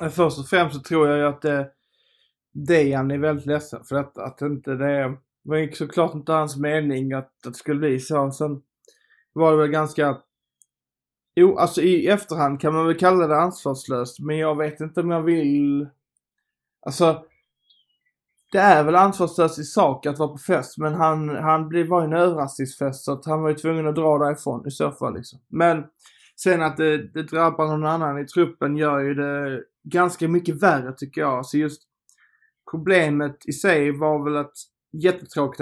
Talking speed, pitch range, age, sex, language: 190 wpm, 140-160 Hz, 20-39, male, Swedish